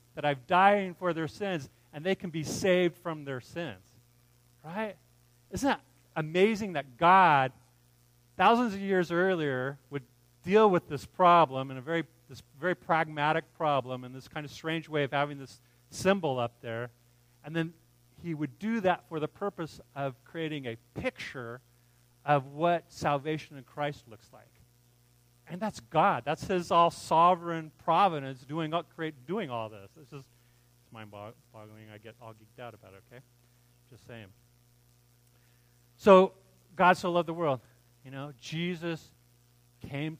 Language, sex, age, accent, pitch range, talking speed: English, male, 40-59, American, 120-165 Hz, 150 wpm